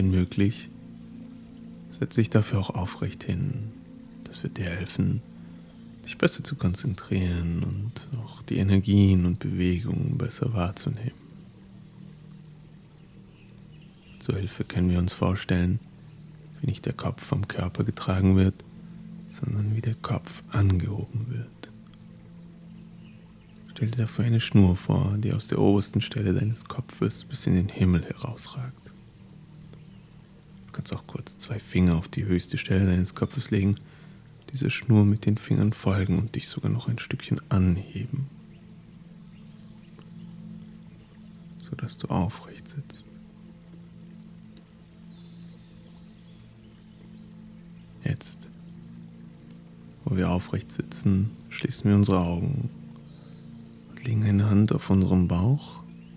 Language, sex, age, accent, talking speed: German, male, 30-49, German, 115 wpm